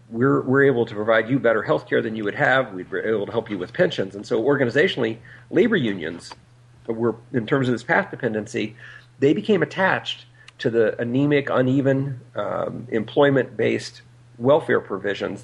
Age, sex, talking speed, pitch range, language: 50-69, male, 175 wpm, 115-130 Hz, English